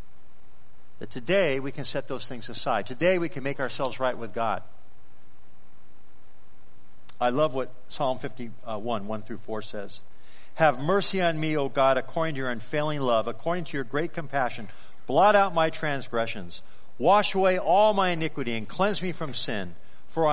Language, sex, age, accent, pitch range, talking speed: English, male, 50-69, American, 115-160 Hz, 165 wpm